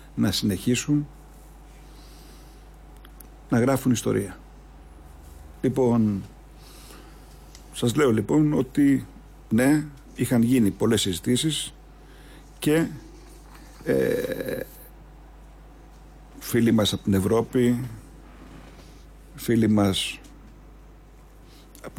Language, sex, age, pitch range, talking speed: Greek, male, 50-69, 110-145 Hz, 65 wpm